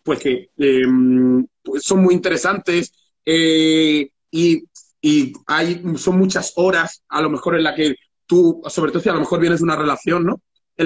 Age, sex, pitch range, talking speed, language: 30-49, male, 140-190 Hz, 180 wpm, Spanish